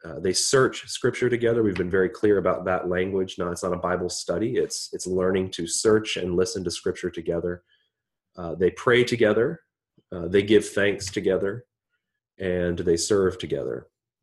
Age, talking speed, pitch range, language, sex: 30-49, 175 wpm, 90-110 Hz, English, male